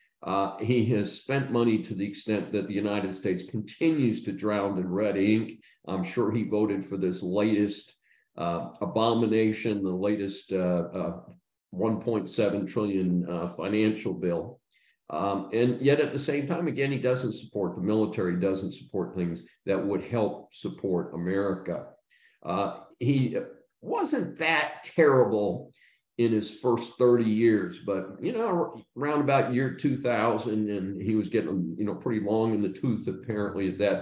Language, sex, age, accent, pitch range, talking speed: English, male, 50-69, American, 100-120 Hz, 155 wpm